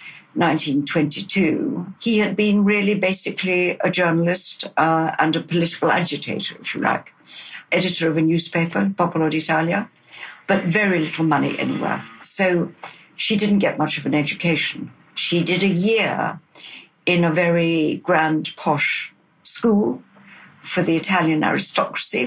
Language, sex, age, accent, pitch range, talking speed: Italian, female, 60-79, British, 160-185 Hz, 130 wpm